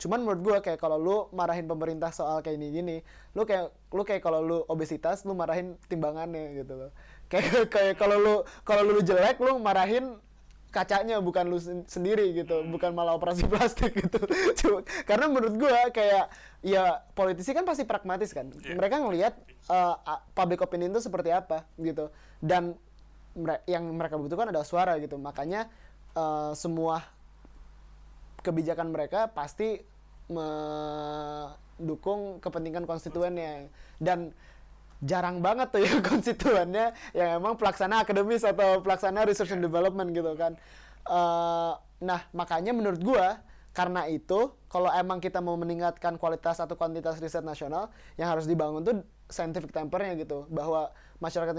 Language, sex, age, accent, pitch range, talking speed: Indonesian, male, 20-39, native, 165-200 Hz, 140 wpm